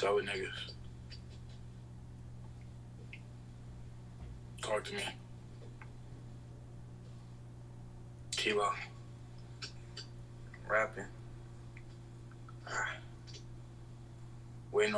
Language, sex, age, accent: English, male, 20-39, American